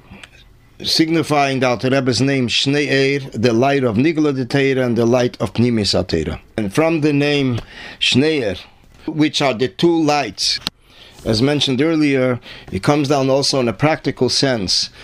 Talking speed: 150 wpm